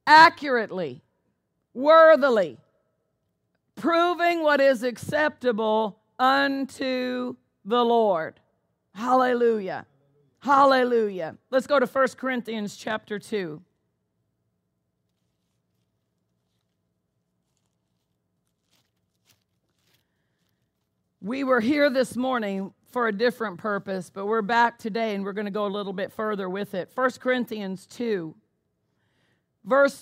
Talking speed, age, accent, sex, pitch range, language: 90 wpm, 40-59, American, female, 195-270 Hz, English